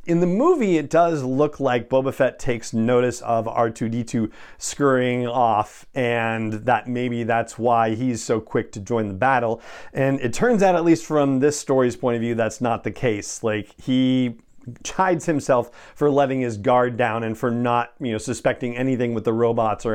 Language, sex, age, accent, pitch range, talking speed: English, male, 40-59, American, 115-135 Hz, 190 wpm